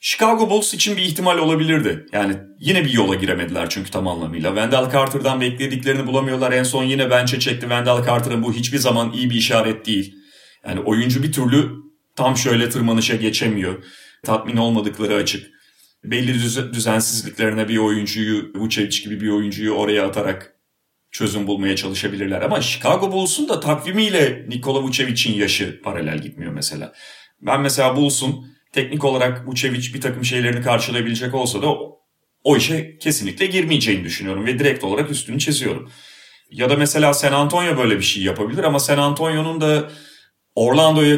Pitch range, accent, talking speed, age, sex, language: 105-140 Hz, native, 150 wpm, 40-59, male, Turkish